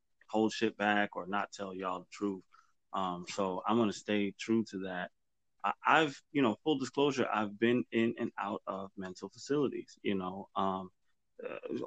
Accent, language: American, English